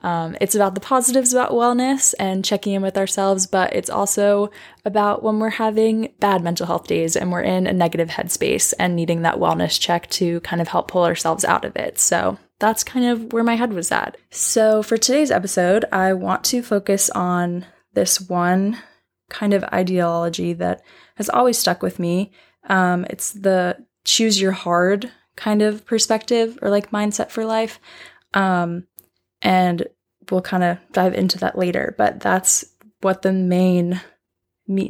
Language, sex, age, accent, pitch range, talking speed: English, female, 10-29, American, 175-210 Hz, 170 wpm